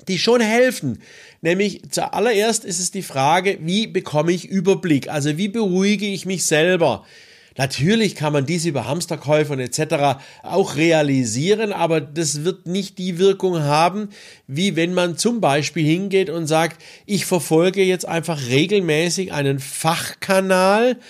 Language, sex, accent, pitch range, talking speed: German, male, German, 145-190 Hz, 145 wpm